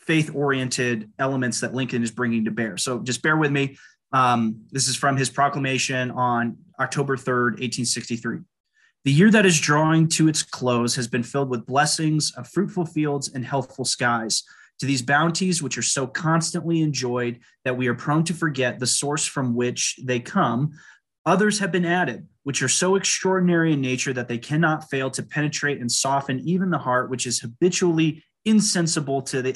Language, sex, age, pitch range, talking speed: English, male, 30-49, 125-155 Hz, 180 wpm